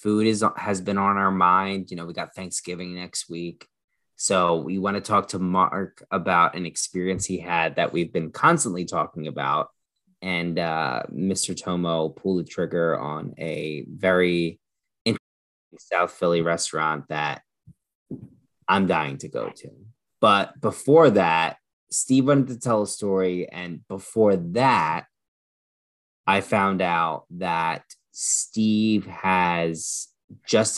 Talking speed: 135 wpm